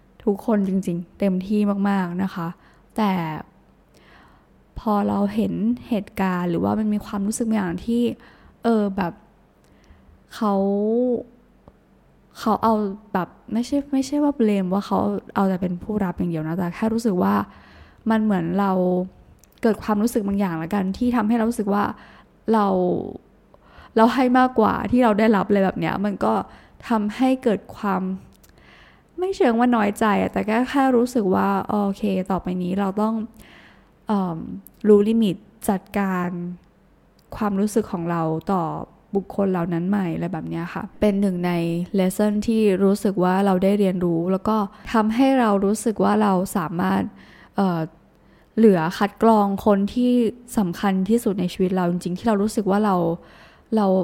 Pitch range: 185-220 Hz